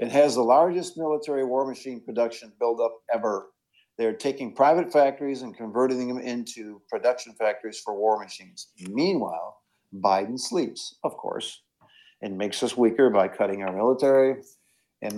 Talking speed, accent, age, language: 145 wpm, American, 60-79, English